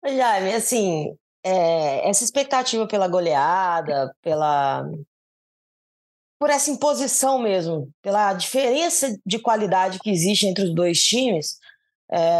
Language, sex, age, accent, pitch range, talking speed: Portuguese, female, 20-39, Brazilian, 170-230 Hz, 115 wpm